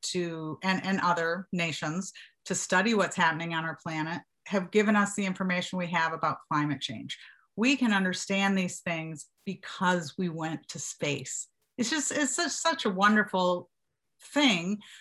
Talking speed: 155 wpm